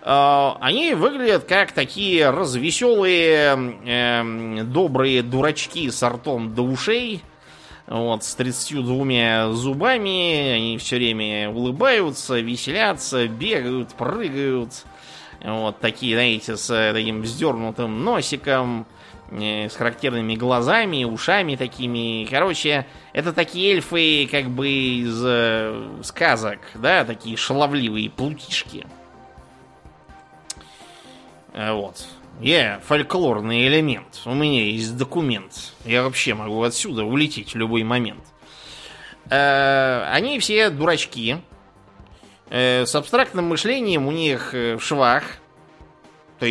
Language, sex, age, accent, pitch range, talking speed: Russian, male, 20-39, native, 115-140 Hz, 100 wpm